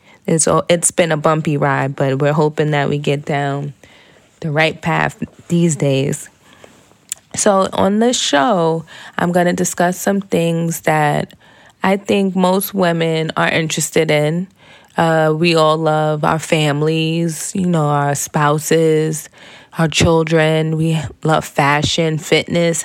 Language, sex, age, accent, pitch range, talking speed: English, female, 20-39, American, 155-185 Hz, 135 wpm